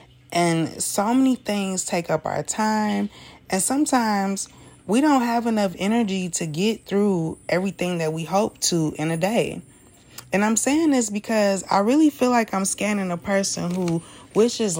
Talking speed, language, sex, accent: 165 wpm, English, female, American